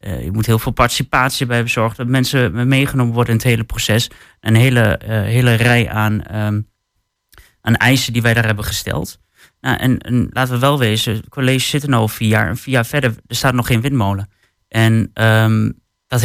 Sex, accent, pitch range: male, Dutch, 110-130 Hz